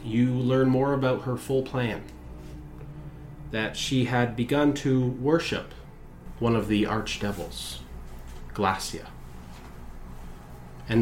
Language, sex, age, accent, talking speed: English, male, 30-49, American, 105 wpm